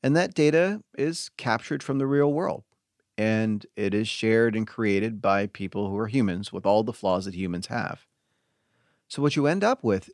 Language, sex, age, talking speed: English, male, 40-59, 195 wpm